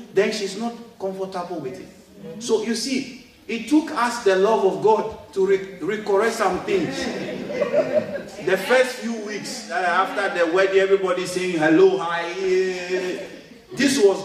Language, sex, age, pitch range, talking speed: English, male, 50-69, 195-280 Hz, 145 wpm